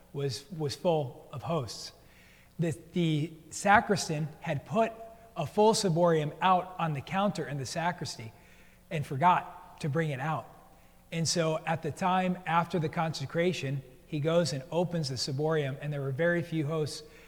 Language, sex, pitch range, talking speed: English, male, 140-170 Hz, 160 wpm